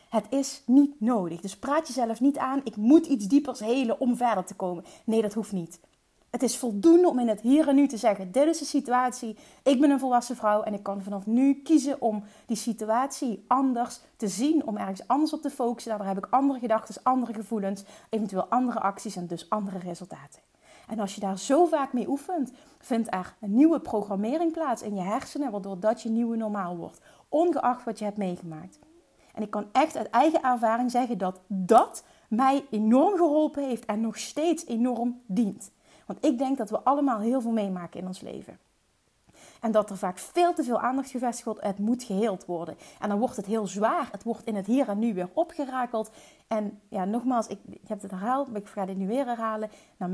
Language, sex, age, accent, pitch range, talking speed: Dutch, female, 30-49, Dutch, 205-265 Hz, 210 wpm